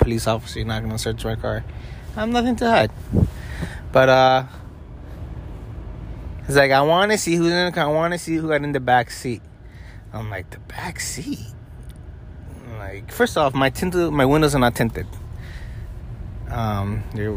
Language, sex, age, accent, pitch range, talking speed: English, male, 20-39, American, 105-145 Hz, 180 wpm